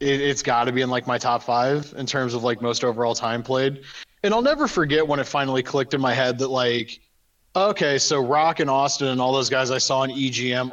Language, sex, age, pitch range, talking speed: English, male, 20-39, 125-150 Hz, 240 wpm